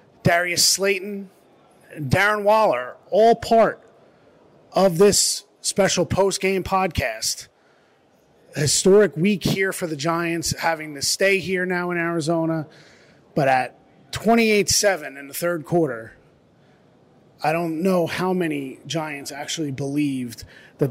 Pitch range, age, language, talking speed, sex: 145-180 Hz, 30-49, English, 120 wpm, male